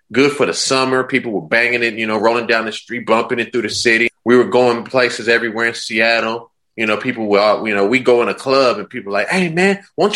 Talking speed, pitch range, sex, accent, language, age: 260 wpm, 115-150 Hz, male, American, English, 30-49